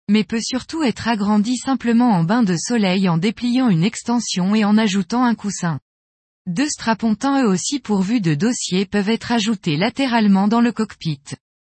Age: 20-39